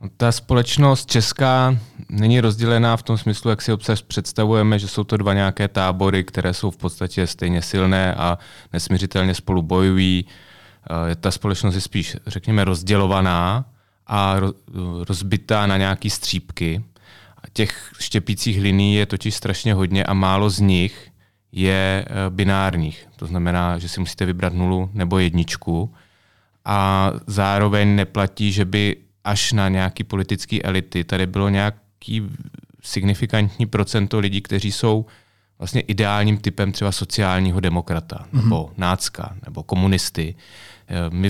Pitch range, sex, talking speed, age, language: 95-105 Hz, male, 130 wpm, 30-49, Czech